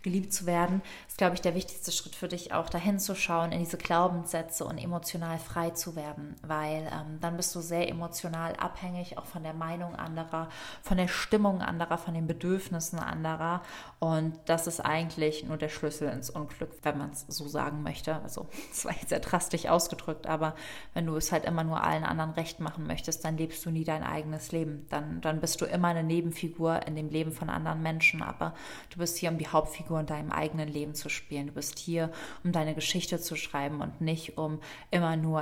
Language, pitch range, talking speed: German, 155-180 Hz, 210 wpm